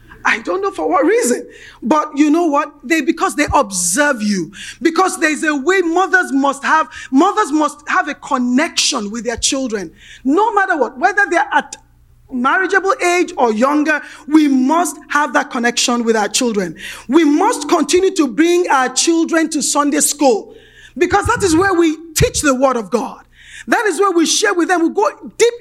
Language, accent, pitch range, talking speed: English, Nigerian, 270-365 Hz, 185 wpm